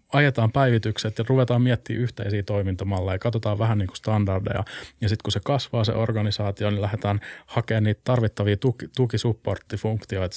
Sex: male